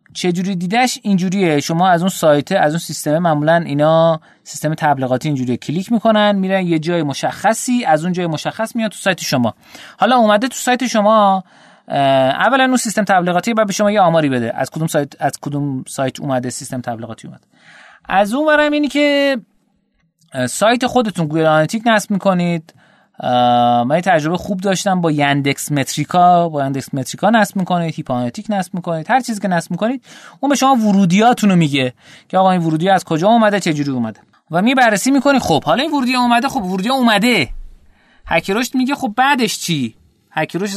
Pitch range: 155-225 Hz